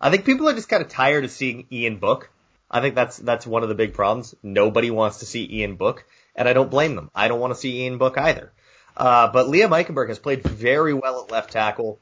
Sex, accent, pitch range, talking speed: male, American, 120-165 Hz, 255 wpm